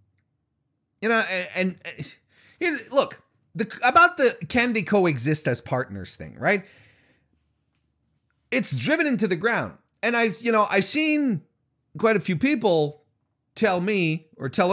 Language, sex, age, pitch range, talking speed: English, male, 30-49, 150-220 Hz, 135 wpm